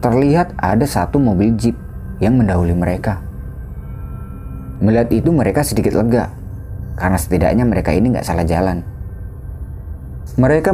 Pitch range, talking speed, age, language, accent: 90-115 Hz, 115 wpm, 30-49, Indonesian, native